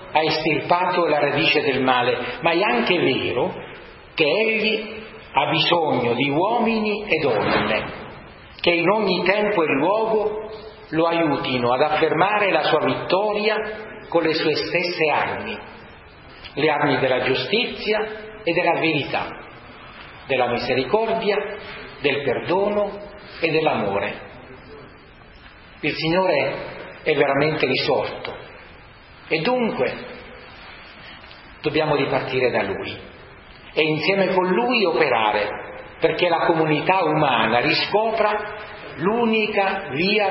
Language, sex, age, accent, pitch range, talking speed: Italian, male, 40-59, native, 150-210 Hz, 105 wpm